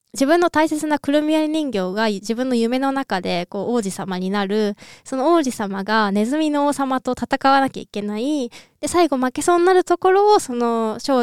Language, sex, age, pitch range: Japanese, female, 20-39, 205-305 Hz